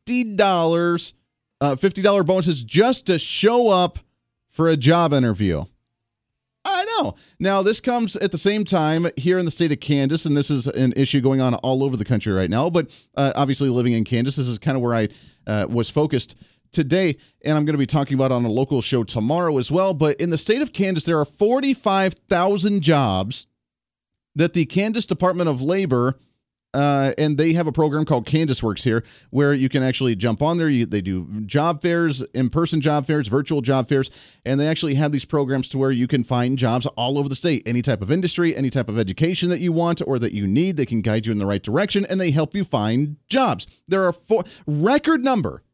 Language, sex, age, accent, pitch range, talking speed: English, male, 30-49, American, 130-185 Hz, 215 wpm